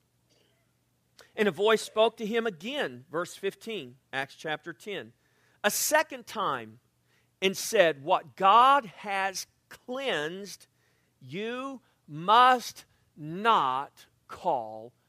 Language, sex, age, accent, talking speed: English, male, 50-69, American, 100 wpm